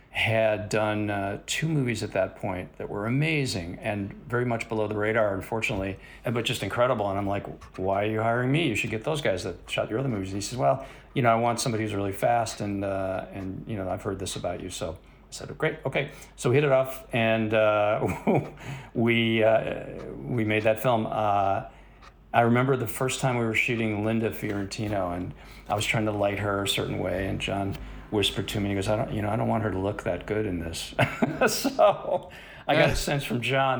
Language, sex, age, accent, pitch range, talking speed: English, male, 40-59, American, 105-120 Hz, 230 wpm